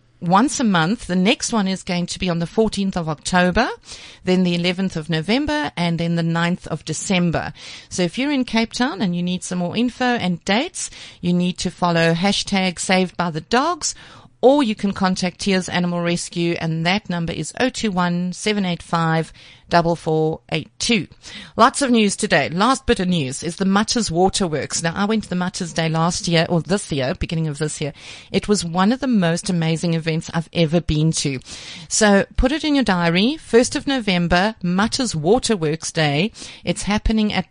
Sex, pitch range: female, 170-220 Hz